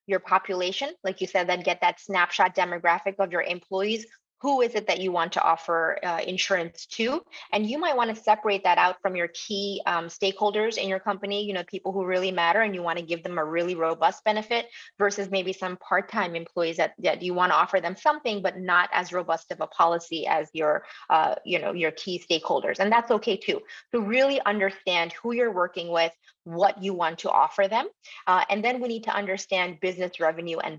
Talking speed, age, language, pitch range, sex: 220 wpm, 20-39, English, 180-220 Hz, female